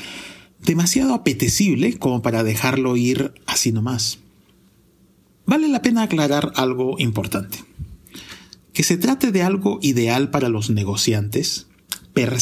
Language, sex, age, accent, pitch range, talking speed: Spanish, male, 40-59, Mexican, 110-155 Hz, 115 wpm